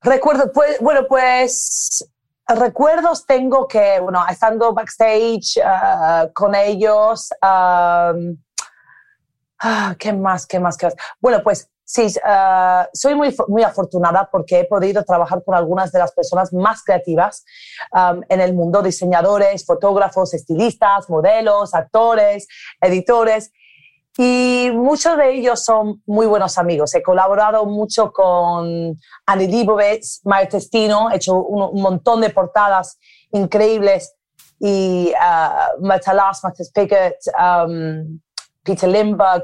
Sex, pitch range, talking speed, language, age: female, 185-230 Hz, 120 wpm, Spanish, 30-49